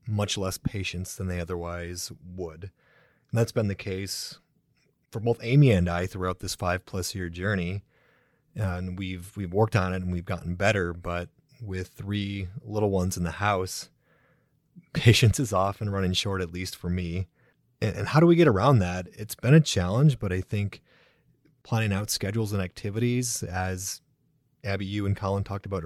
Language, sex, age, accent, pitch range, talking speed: English, male, 30-49, American, 95-115 Hz, 175 wpm